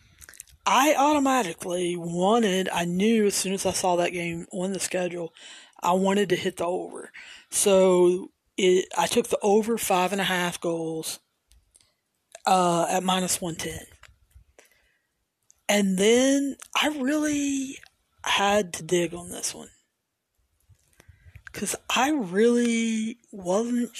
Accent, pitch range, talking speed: American, 180-225 Hz, 125 wpm